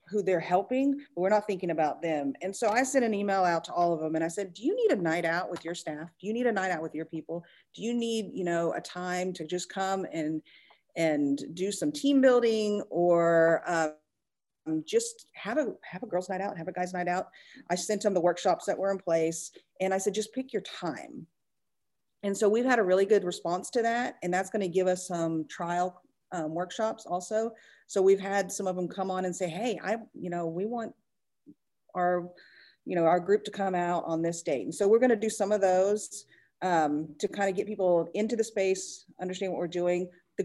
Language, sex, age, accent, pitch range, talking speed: English, female, 40-59, American, 175-215 Hz, 235 wpm